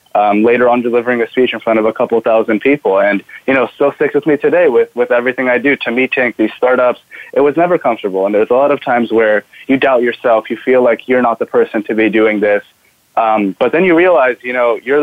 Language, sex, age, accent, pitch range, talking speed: English, male, 20-39, American, 115-145 Hz, 255 wpm